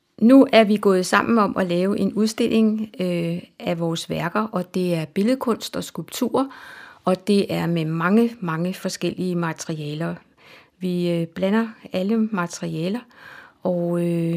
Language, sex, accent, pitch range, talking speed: Danish, female, native, 170-215 Hz, 135 wpm